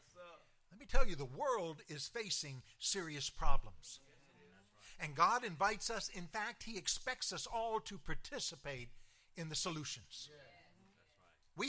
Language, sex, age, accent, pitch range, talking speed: English, male, 60-79, American, 140-220 Hz, 130 wpm